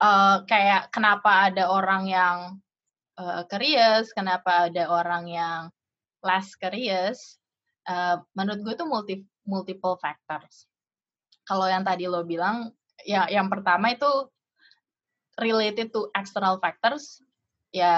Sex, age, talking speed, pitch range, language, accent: female, 20-39, 115 wpm, 185-225 Hz, Indonesian, native